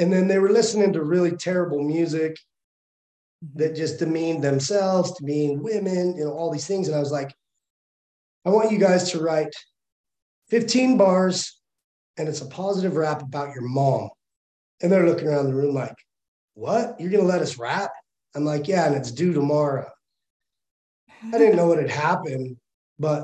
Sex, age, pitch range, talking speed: male, 30-49, 145-190 Hz, 175 wpm